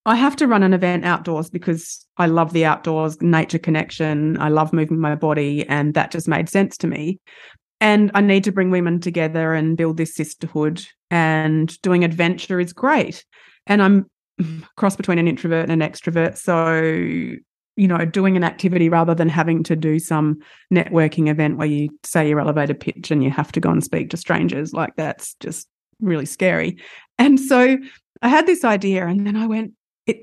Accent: Australian